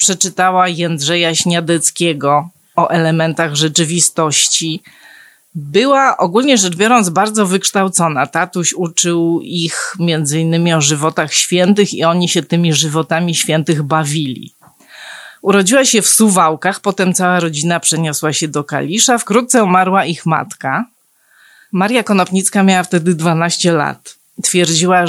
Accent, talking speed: native, 115 wpm